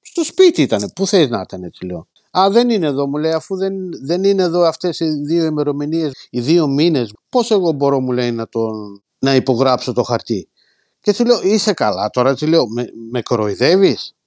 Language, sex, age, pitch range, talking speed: Greek, male, 50-69, 125-210 Hz, 205 wpm